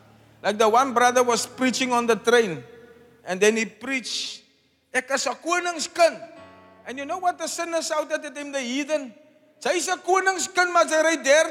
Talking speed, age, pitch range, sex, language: 130 wpm, 50-69, 205-295 Hz, male, English